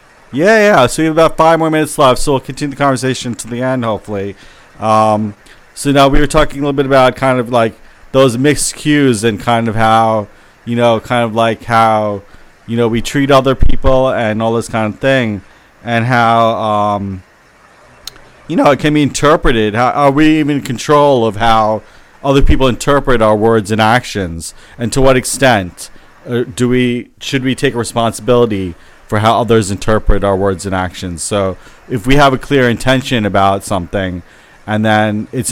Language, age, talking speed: English, 30-49, 185 wpm